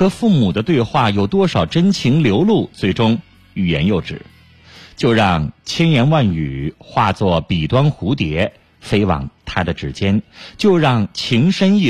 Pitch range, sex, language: 80-120 Hz, male, Chinese